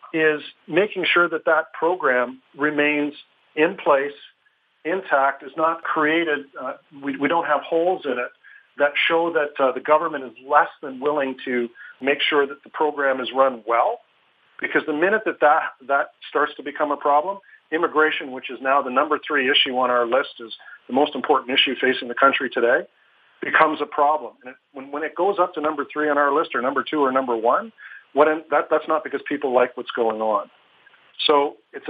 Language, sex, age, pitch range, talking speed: English, male, 50-69, 135-160 Hz, 200 wpm